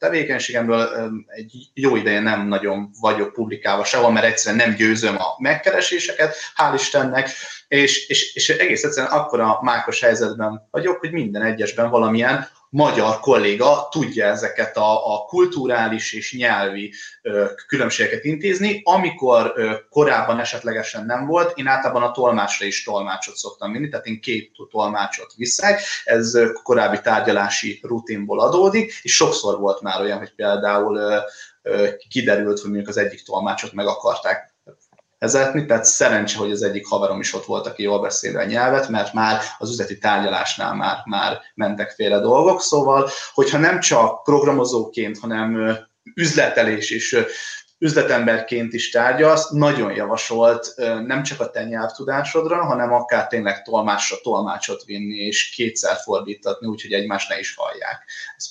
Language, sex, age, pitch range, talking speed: Hungarian, male, 30-49, 110-155 Hz, 140 wpm